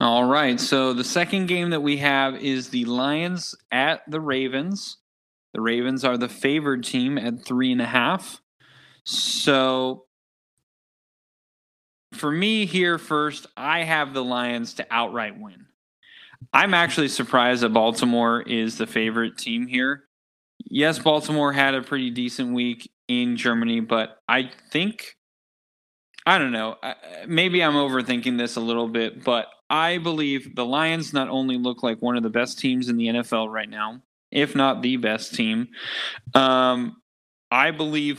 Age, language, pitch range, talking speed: 20-39, English, 120-150 Hz, 150 wpm